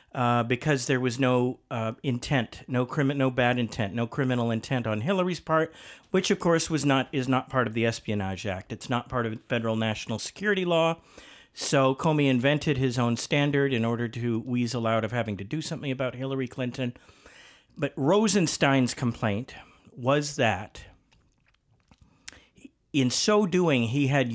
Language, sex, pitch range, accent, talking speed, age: English, male, 120-150 Hz, American, 165 wpm, 50-69